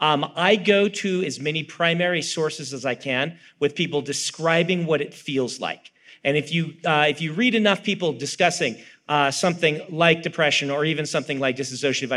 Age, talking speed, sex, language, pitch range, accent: 40-59, 185 wpm, male, English, 145-185 Hz, American